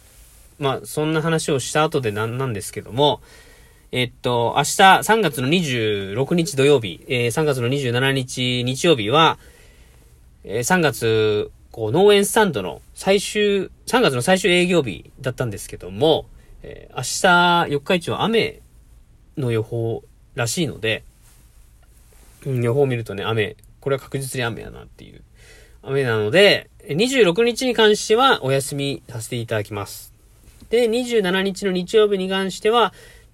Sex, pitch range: male, 110-165 Hz